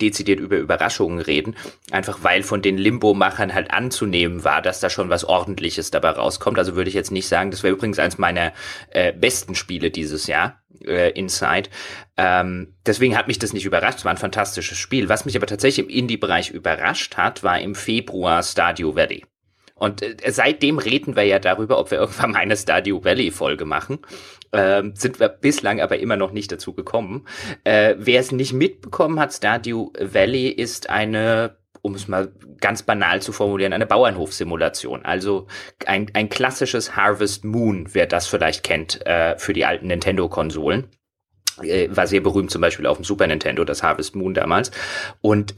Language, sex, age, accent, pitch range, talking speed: German, male, 30-49, German, 95-130 Hz, 175 wpm